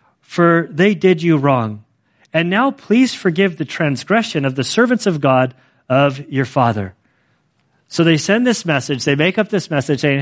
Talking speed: 175 wpm